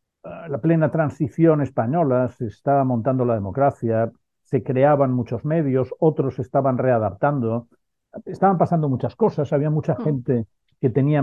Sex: male